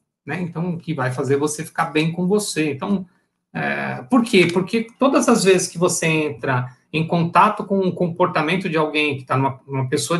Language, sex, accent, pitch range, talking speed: Portuguese, male, Brazilian, 145-185 Hz, 200 wpm